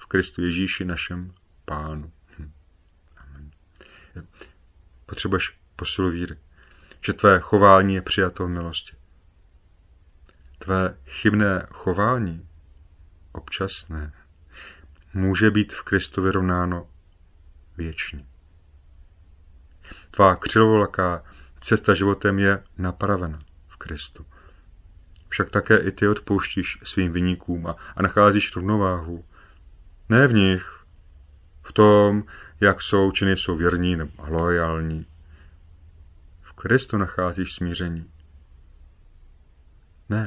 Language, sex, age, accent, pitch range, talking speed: Czech, male, 30-49, native, 75-95 Hz, 90 wpm